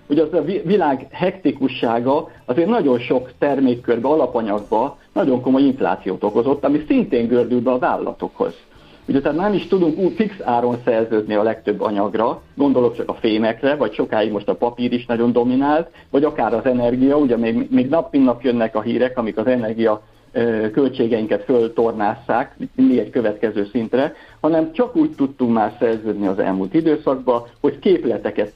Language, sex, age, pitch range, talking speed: Hungarian, male, 50-69, 115-155 Hz, 160 wpm